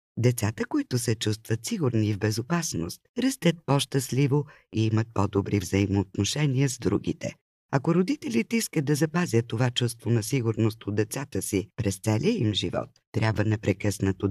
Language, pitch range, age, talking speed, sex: Bulgarian, 105-155 Hz, 50-69, 145 wpm, female